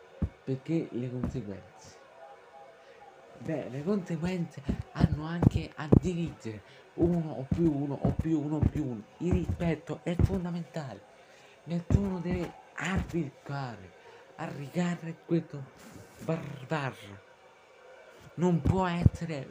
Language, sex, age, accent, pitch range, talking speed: Italian, male, 50-69, native, 130-170 Hz, 100 wpm